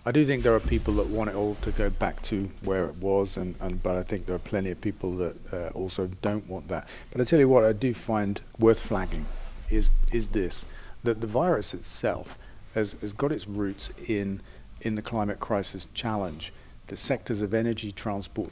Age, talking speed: 40-59, 215 wpm